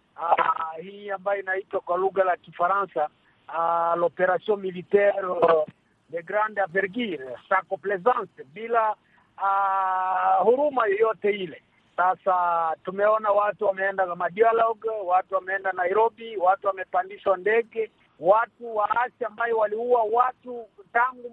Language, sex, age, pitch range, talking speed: Swahili, male, 50-69, 195-245 Hz, 110 wpm